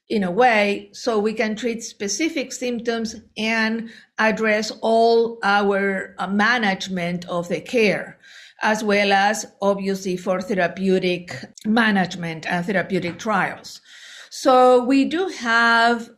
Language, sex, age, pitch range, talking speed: English, female, 50-69, 185-230 Hz, 115 wpm